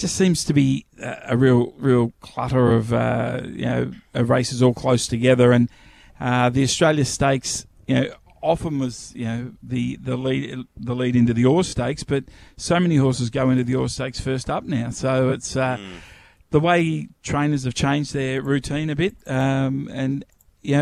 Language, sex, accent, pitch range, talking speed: English, male, Australian, 120-135 Hz, 185 wpm